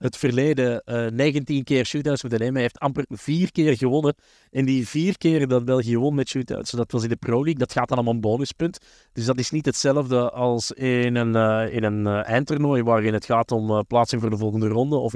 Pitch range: 120-140 Hz